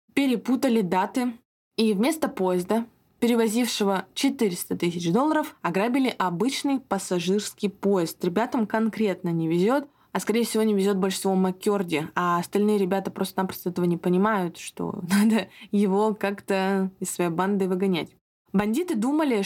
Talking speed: 130 wpm